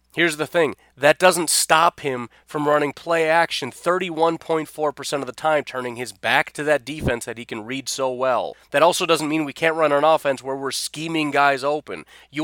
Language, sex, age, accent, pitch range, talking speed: English, male, 30-49, American, 125-165 Hz, 205 wpm